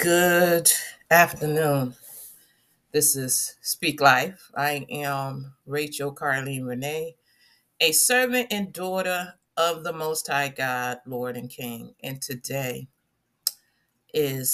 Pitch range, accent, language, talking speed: 130-170 Hz, American, English, 105 wpm